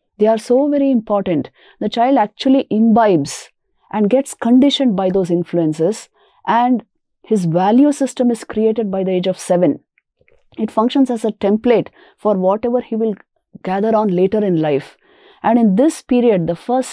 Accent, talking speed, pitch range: Indian, 165 wpm, 195-250 Hz